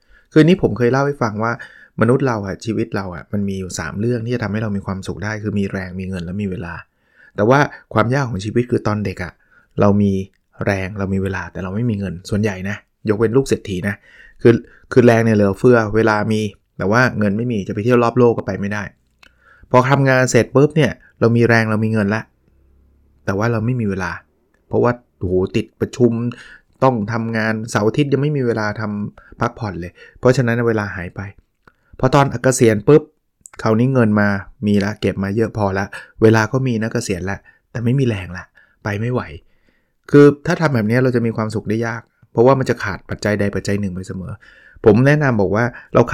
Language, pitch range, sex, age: Thai, 100-120 Hz, male, 20-39